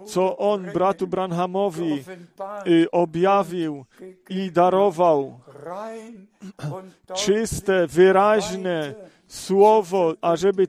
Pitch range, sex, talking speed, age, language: 175-195 Hz, male, 60 wpm, 40-59, Polish